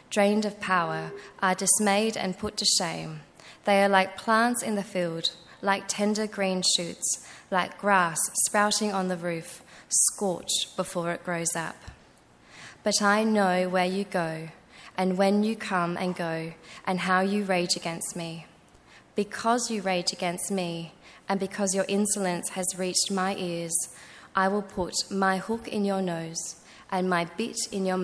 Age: 20-39